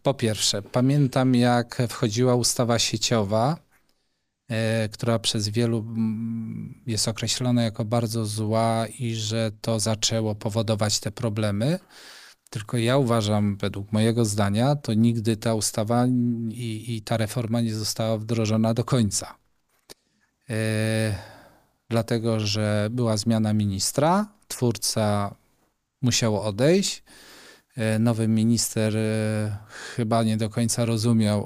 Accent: native